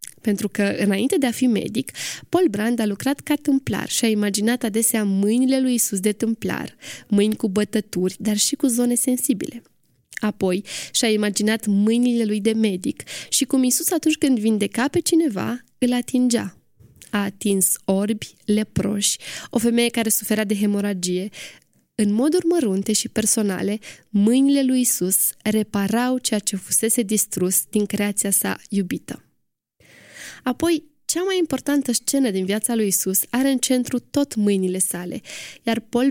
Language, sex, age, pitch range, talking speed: Romanian, female, 20-39, 205-255 Hz, 150 wpm